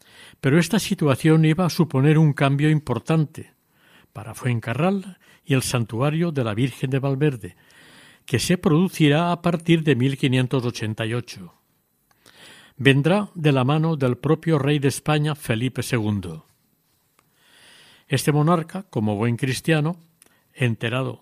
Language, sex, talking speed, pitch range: Spanish, male, 120 wpm, 125-160 Hz